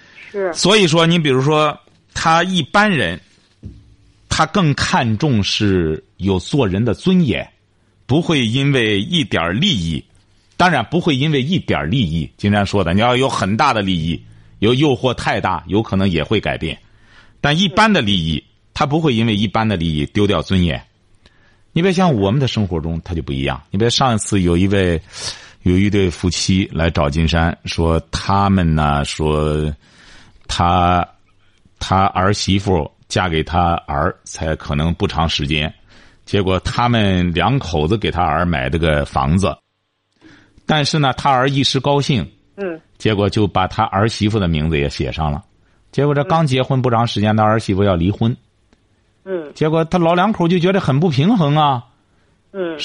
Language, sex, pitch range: Chinese, male, 90-135 Hz